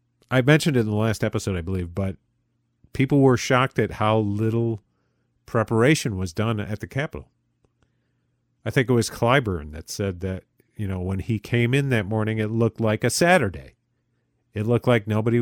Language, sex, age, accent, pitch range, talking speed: English, male, 40-59, American, 105-125 Hz, 185 wpm